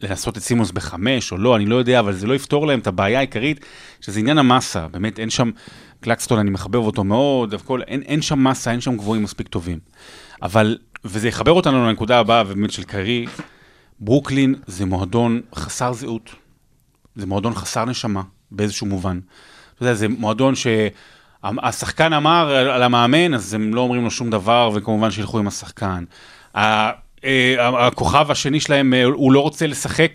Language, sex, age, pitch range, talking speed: Hebrew, male, 30-49, 110-165 Hz, 170 wpm